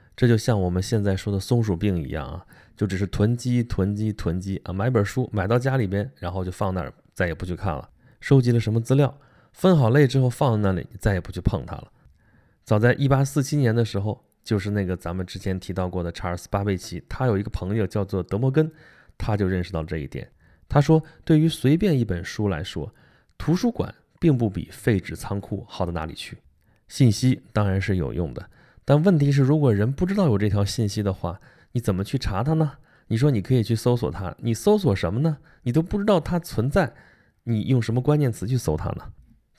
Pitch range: 95-130 Hz